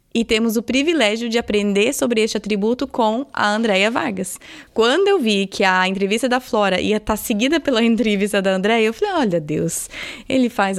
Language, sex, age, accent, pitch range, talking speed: Portuguese, female, 20-39, Brazilian, 205-260 Hz, 190 wpm